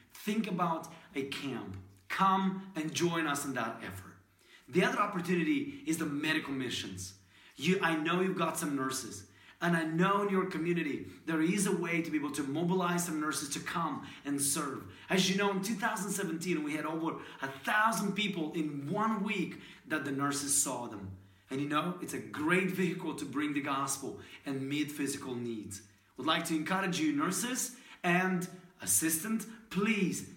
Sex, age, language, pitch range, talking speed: male, 30-49, English, 140-185 Hz, 175 wpm